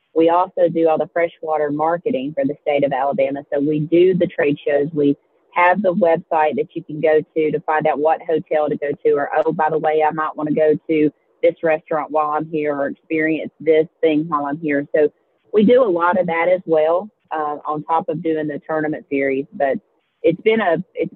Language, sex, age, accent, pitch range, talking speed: English, female, 30-49, American, 155-175 Hz, 220 wpm